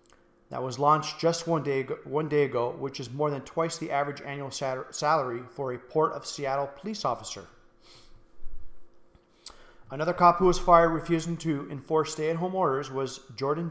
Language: English